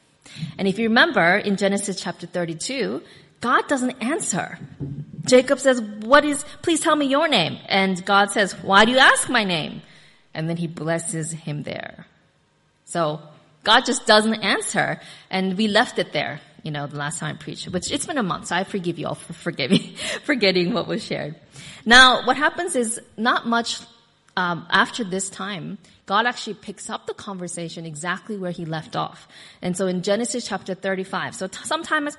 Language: English